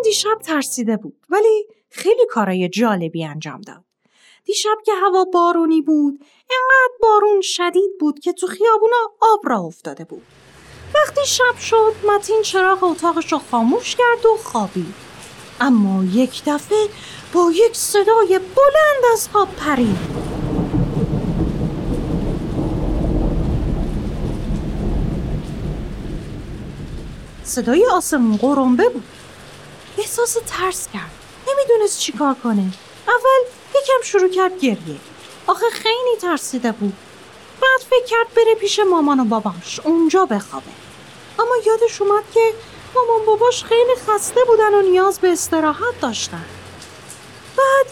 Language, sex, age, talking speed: Persian, female, 30-49, 110 wpm